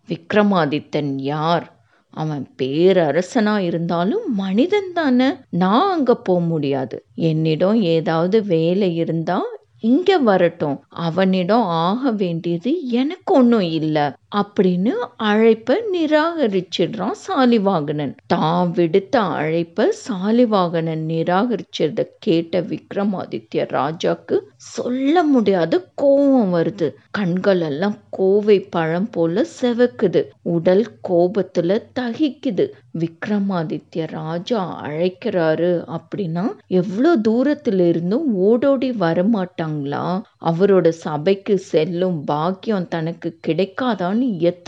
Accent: native